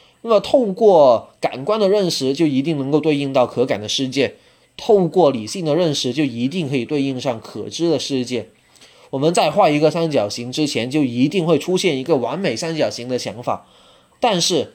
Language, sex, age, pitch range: Chinese, male, 20-39, 130-185 Hz